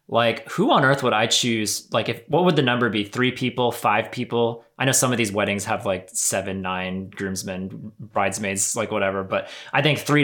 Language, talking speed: English, 210 wpm